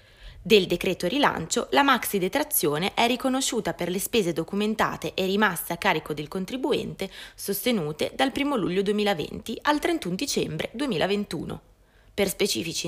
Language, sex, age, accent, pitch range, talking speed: Italian, female, 20-39, native, 170-235 Hz, 130 wpm